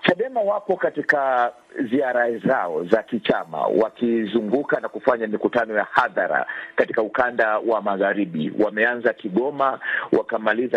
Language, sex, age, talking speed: Swahili, male, 50-69, 110 wpm